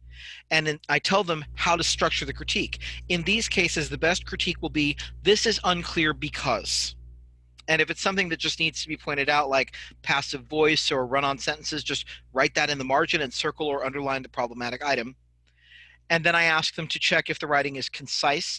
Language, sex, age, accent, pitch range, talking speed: English, male, 40-59, American, 130-155 Hz, 210 wpm